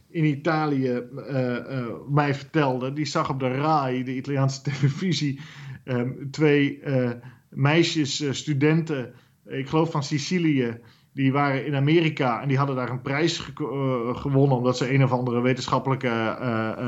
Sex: male